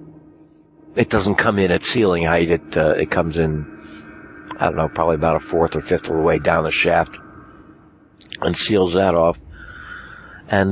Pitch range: 85-125 Hz